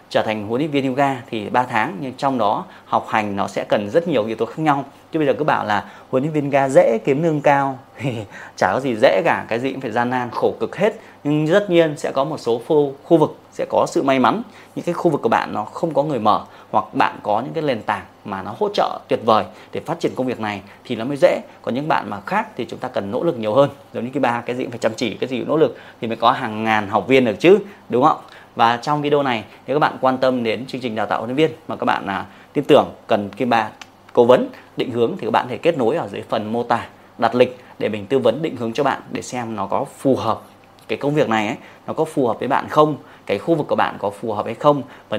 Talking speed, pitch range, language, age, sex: 290 wpm, 115-140 Hz, Vietnamese, 20-39, male